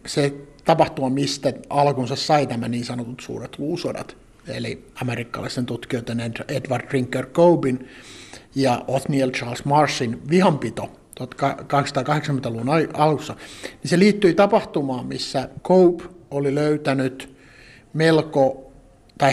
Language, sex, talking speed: Finnish, male, 100 wpm